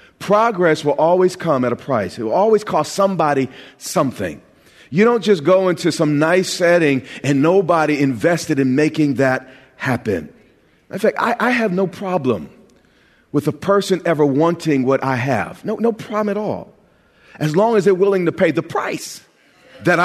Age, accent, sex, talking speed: 40-59, American, male, 175 wpm